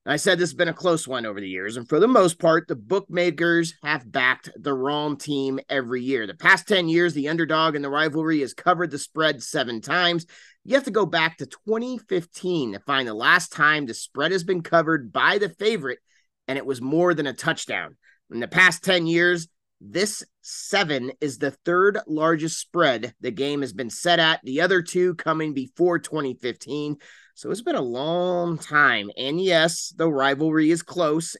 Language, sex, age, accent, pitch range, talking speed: English, male, 30-49, American, 135-175 Hz, 195 wpm